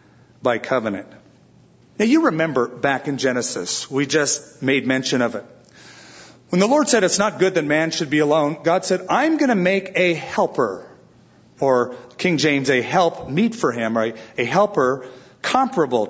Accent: American